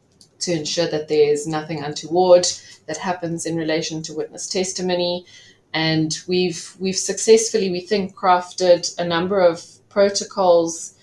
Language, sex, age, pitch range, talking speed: English, female, 20-39, 155-180 Hz, 135 wpm